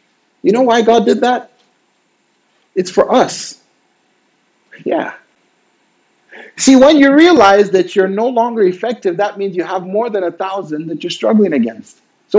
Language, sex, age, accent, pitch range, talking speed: English, male, 50-69, American, 195-275 Hz, 155 wpm